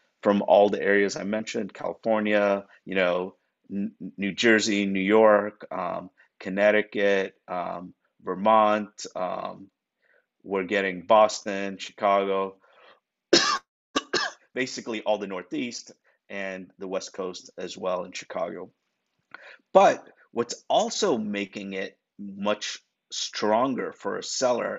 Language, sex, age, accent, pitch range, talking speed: English, male, 30-49, American, 100-110 Hz, 105 wpm